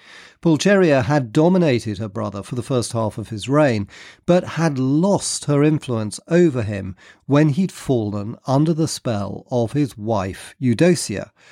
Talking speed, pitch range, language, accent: 150 wpm, 105-145 Hz, English, British